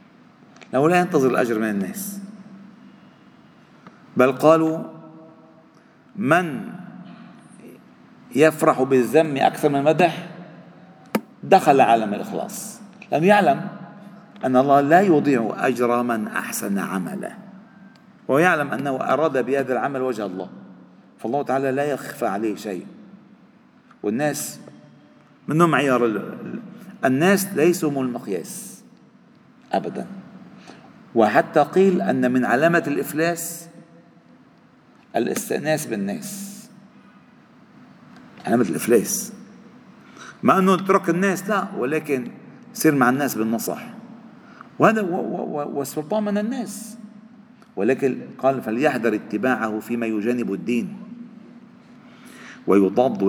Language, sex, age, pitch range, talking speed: Arabic, male, 40-59, 135-220 Hz, 90 wpm